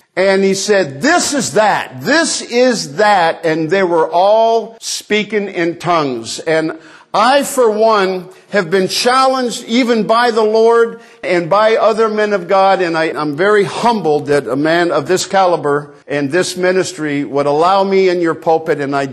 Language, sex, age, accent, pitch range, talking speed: English, male, 50-69, American, 165-225 Hz, 170 wpm